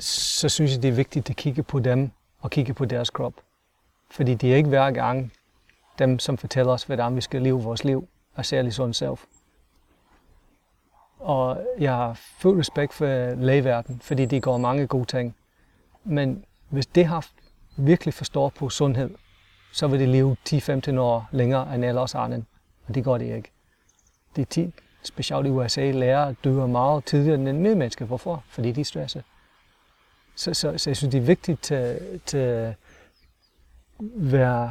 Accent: native